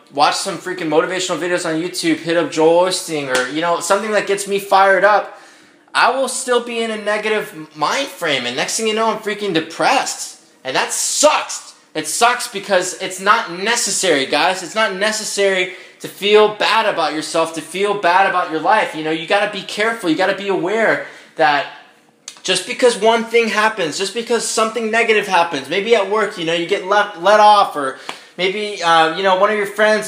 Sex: male